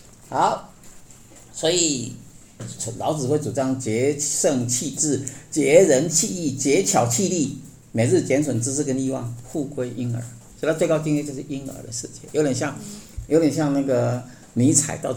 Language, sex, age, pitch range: Chinese, male, 50-69, 115-145 Hz